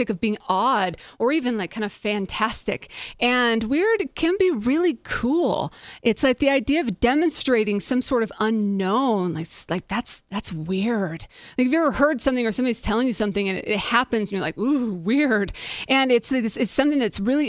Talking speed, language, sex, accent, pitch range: 185 wpm, English, female, American, 210-270 Hz